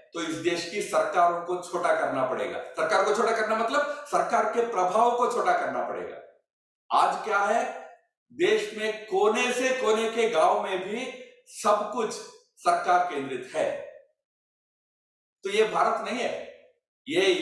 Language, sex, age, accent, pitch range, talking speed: Hindi, male, 60-79, native, 210-290 Hz, 155 wpm